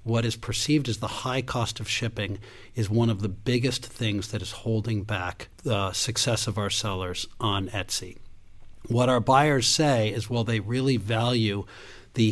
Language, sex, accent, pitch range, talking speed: English, male, American, 110-125 Hz, 175 wpm